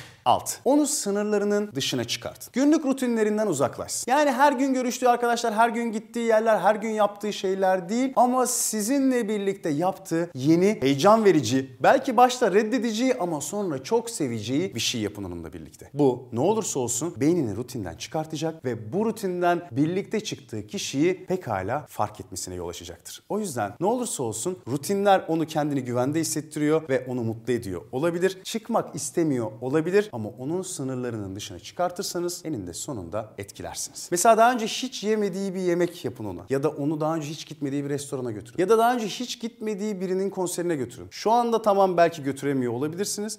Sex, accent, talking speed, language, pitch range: male, native, 165 wpm, Turkish, 140-220 Hz